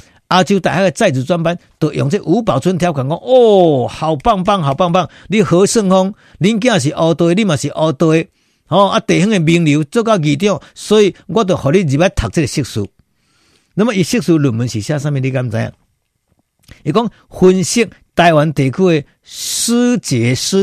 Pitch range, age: 130-190 Hz, 50-69